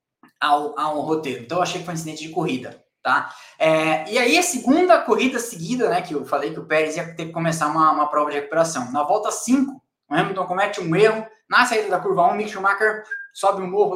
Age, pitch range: 20-39, 150-195 Hz